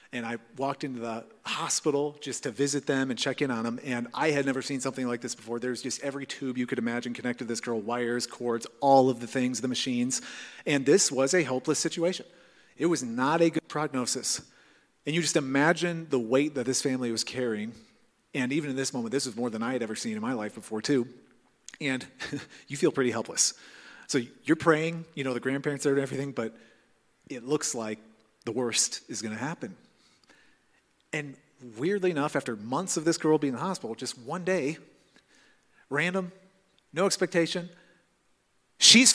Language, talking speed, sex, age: English, 195 wpm, male, 40-59